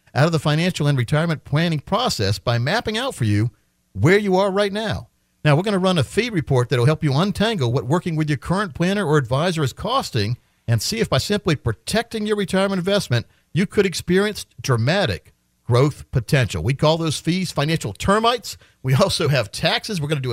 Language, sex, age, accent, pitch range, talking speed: English, male, 50-69, American, 120-175 Hz, 205 wpm